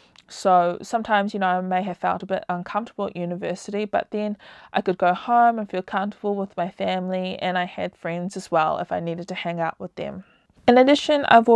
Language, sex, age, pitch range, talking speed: English, female, 20-39, 180-210 Hz, 220 wpm